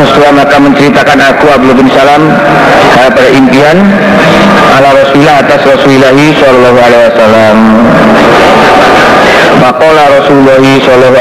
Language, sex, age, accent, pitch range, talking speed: Indonesian, male, 50-69, native, 120-145 Hz, 85 wpm